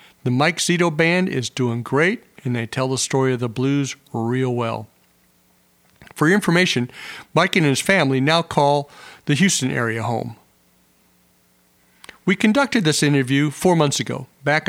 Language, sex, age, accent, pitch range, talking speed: English, male, 50-69, American, 125-155 Hz, 155 wpm